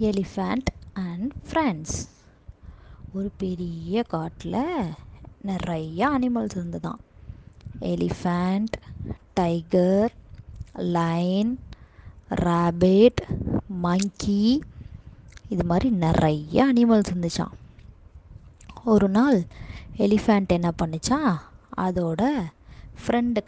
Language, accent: Tamil, native